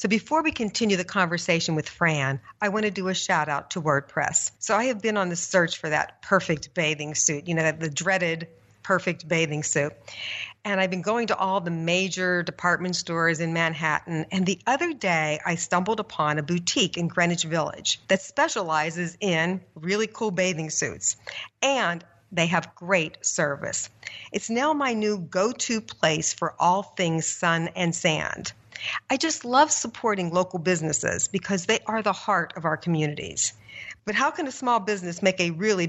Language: English